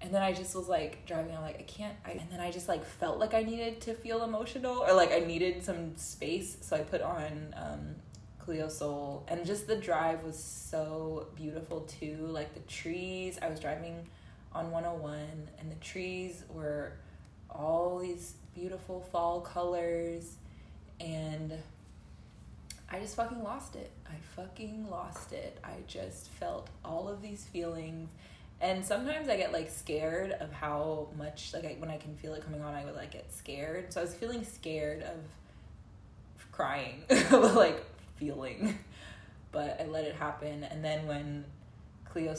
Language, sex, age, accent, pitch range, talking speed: English, female, 20-39, American, 150-185 Hz, 170 wpm